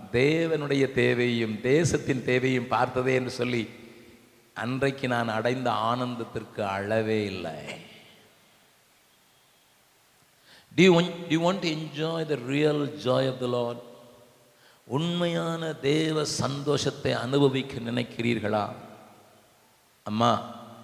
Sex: male